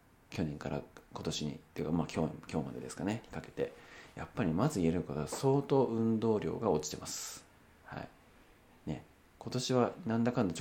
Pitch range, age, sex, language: 80-115 Hz, 40-59, male, Japanese